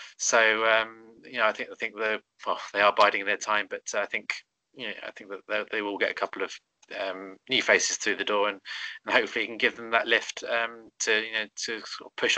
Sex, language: male, English